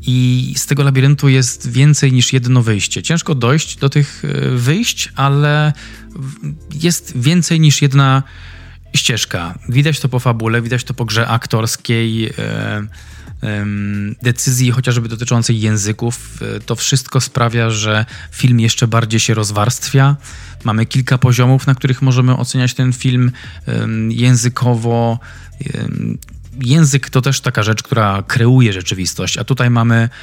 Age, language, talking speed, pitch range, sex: 20-39, Polish, 135 wpm, 110-135 Hz, male